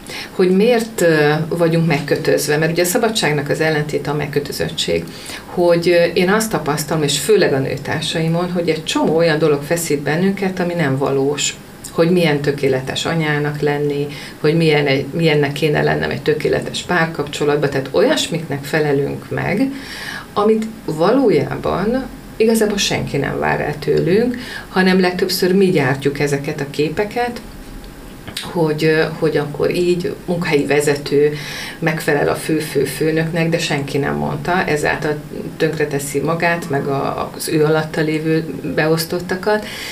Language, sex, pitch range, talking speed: Hungarian, female, 145-180 Hz, 125 wpm